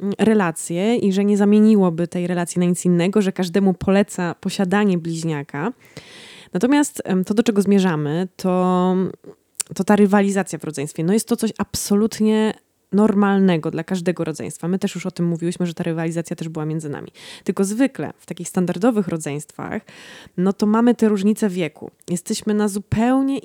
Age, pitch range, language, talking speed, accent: 20-39, 170-210 Hz, Polish, 160 wpm, native